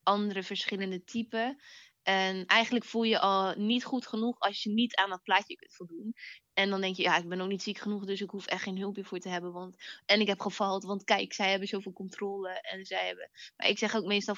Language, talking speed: Dutch, 245 wpm